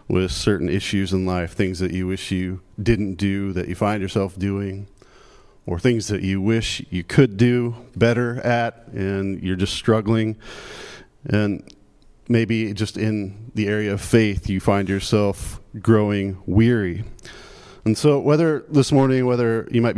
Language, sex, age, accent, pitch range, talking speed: English, male, 40-59, American, 100-115 Hz, 155 wpm